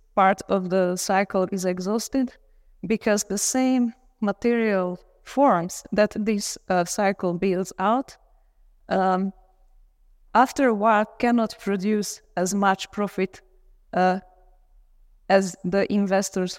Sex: female